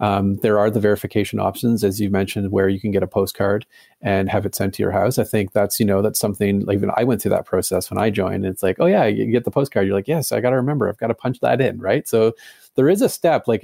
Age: 30-49